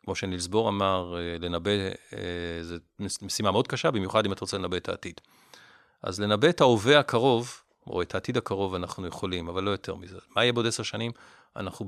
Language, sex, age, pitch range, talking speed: Hebrew, male, 40-59, 95-120 Hz, 180 wpm